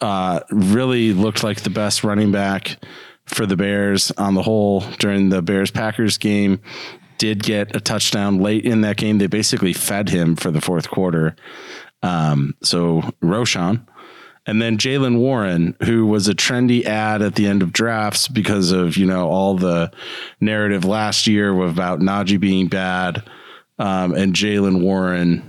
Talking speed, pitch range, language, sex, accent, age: 160 wpm, 95-115 Hz, English, male, American, 30-49